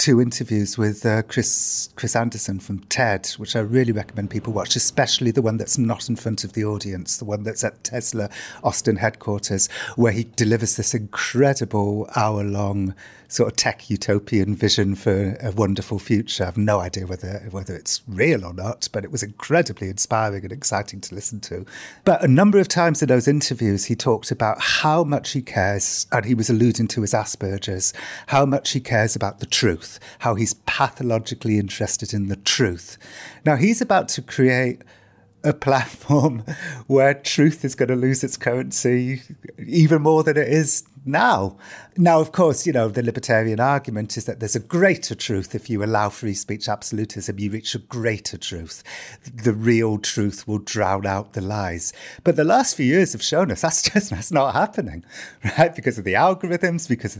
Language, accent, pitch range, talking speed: English, British, 105-145 Hz, 185 wpm